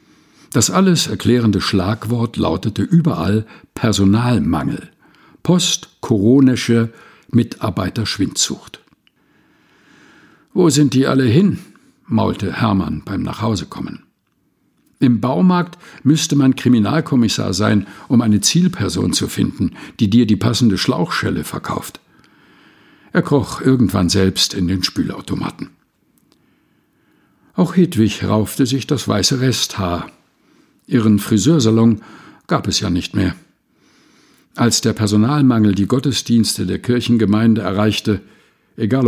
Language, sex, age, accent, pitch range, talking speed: German, male, 60-79, German, 105-135 Hz, 100 wpm